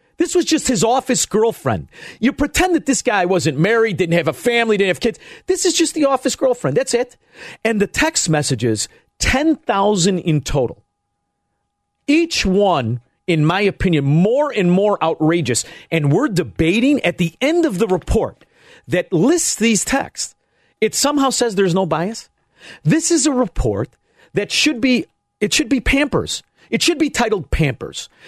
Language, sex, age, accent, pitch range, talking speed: English, male, 40-59, American, 165-255 Hz, 170 wpm